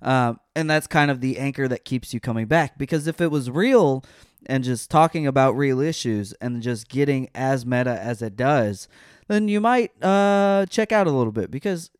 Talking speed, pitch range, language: 205 wpm, 110-150 Hz, English